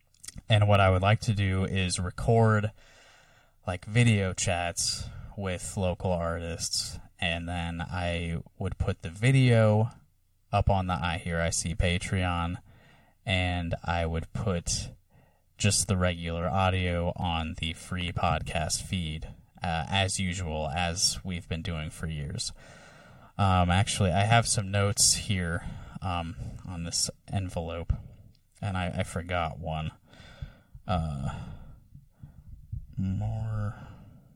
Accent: American